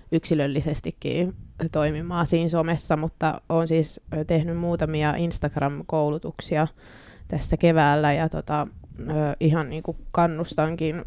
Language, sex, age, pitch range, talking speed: Finnish, female, 20-39, 145-165 Hz, 100 wpm